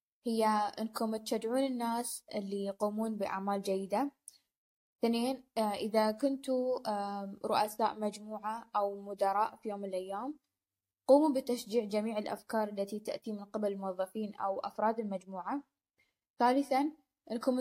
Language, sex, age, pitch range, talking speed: Arabic, female, 10-29, 210-255 Hz, 110 wpm